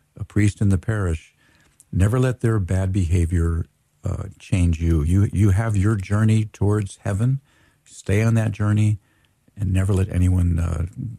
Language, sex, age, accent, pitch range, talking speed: English, male, 50-69, American, 90-110 Hz, 155 wpm